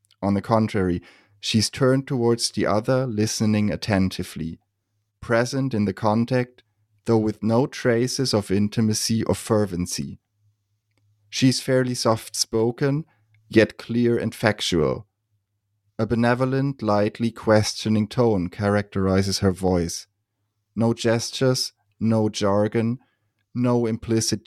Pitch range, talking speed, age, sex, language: 100-120 Hz, 105 wpm, 30-49, male, English